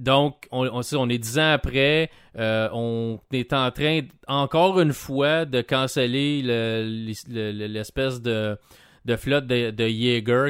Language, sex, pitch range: French, male, 115-135 Hz